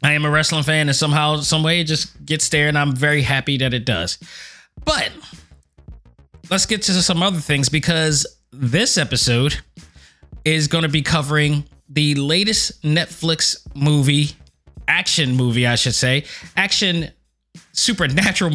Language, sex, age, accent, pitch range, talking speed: English, male, 20-39, American, 140-180 Hz, 150 wpm